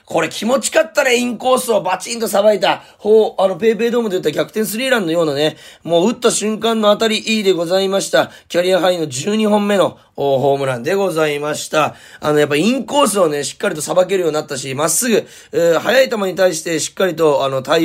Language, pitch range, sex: Japanese, 145-215 Hz, male